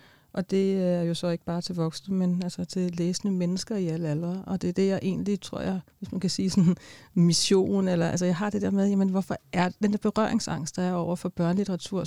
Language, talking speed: Danish, 245 wpm